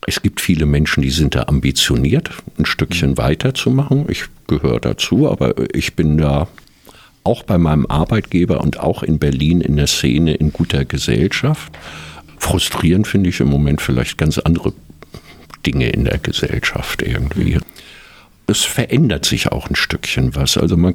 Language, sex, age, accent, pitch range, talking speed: German, male, 50-69, German, 75-100 Hz, 155 wpm